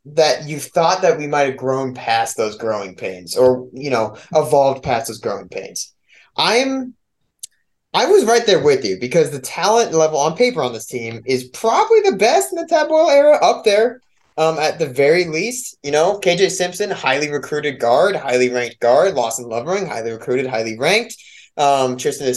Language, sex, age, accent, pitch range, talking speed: English, male, 20-39, American, 125-175 Hz, 190 wpm